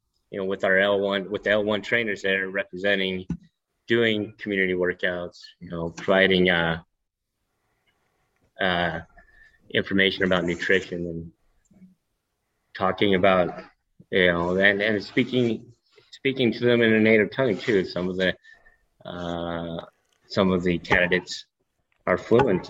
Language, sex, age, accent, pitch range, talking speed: English, male, 20-39, American, 90-105 Hz, 130 wpm